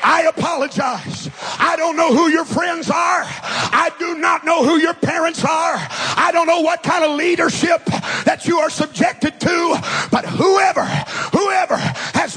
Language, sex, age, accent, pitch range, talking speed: English, male, 40-59, American, 320-355 Hz, 160 wpm